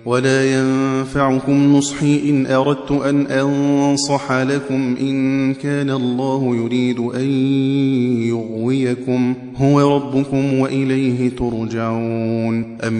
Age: 30-49